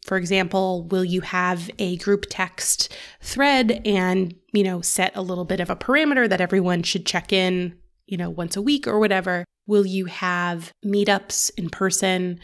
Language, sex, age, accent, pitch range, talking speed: English, female, 20-39, American, 180-210 Hz, 180 wpm